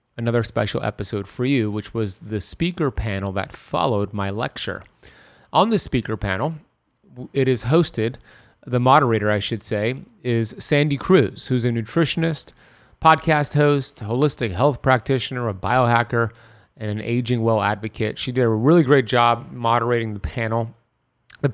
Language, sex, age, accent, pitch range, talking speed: English, male, 30-49, American, 115-140 Hz, 150 wpm